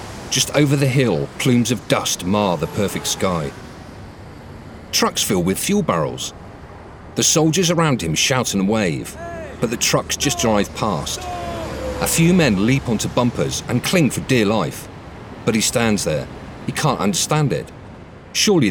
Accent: British